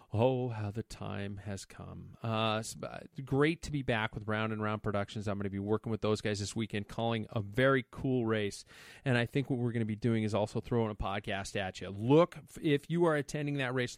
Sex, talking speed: male, 230 wpm